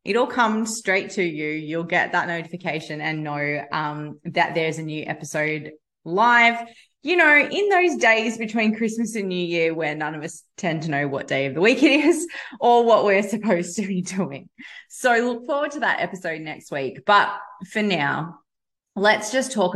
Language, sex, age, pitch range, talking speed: English, female, 20-39, 155-215 Hz, 190 wpm